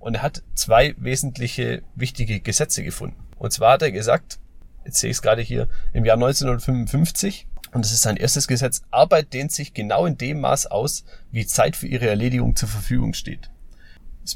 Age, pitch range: 30-49, 105-130 Hz